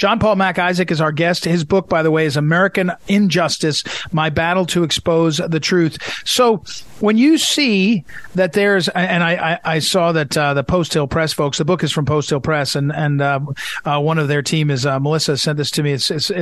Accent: American